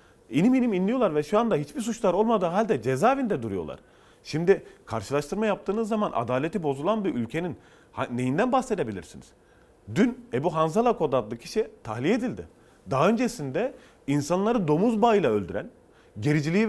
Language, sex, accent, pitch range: Turkish, male, native, 145-225 Hz